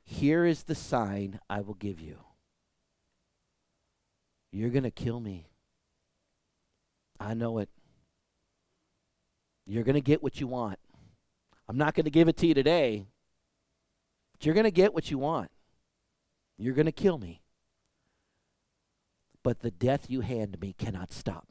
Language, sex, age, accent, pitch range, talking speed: English, male, 40-59, American, 90-125 Hz, 150 wpm